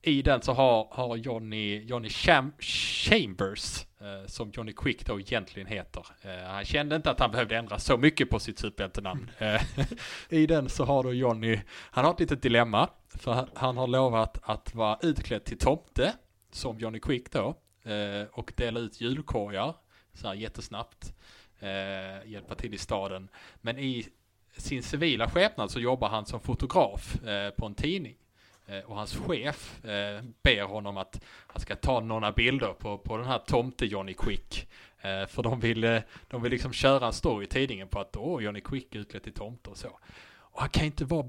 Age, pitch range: 30-49, 100-125 Hz